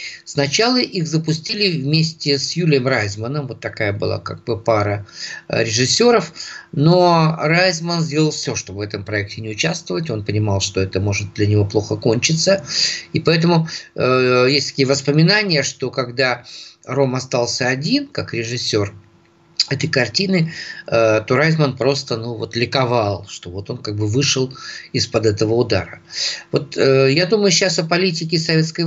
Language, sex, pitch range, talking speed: Ukrainian, male, 115-155 Hz, 140 wpm